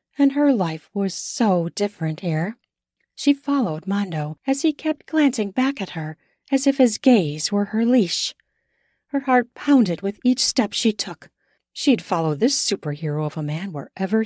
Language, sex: English, female